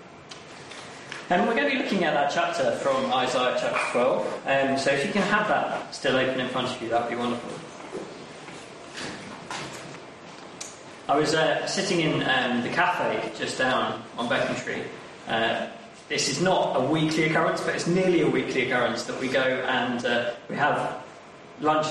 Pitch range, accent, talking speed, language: 125-165 Hz, British, 175 wpm, English